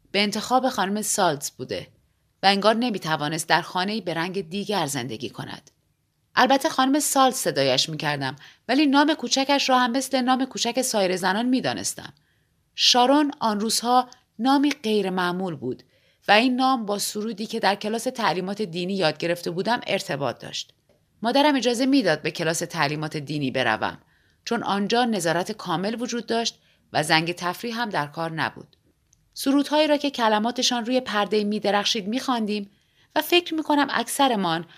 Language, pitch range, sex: Persian, 170-245 Hz, female